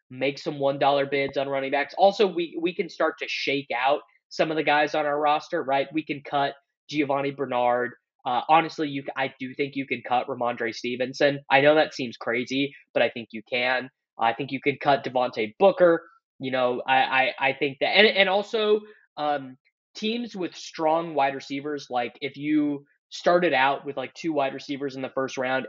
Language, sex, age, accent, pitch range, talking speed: English, male, 20-39, American, 130-150 Hz, 205 wpm